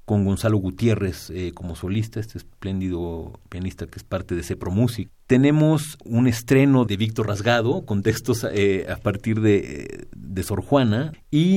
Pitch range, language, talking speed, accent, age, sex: 100-120 Hz, Spanish, 160 wpm, Mexican, 40-59, male